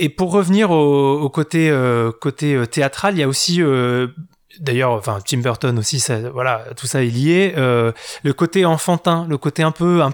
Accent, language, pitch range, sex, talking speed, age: French, French, 130-165 Hz, male, 195 wpm, 20-39